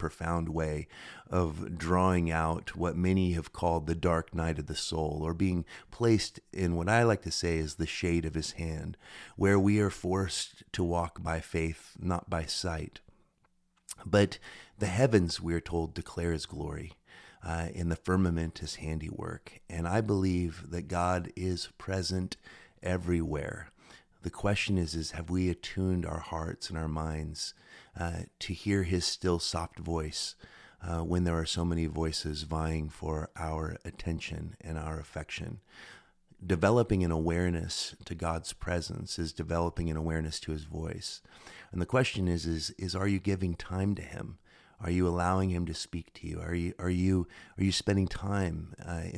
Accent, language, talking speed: American, English, 170 wpm